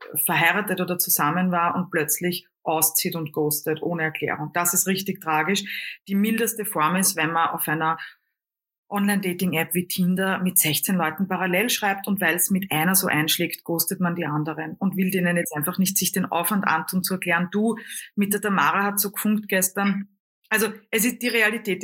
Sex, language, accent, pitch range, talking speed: female, German, German, 170-200 Hz, 185 wpm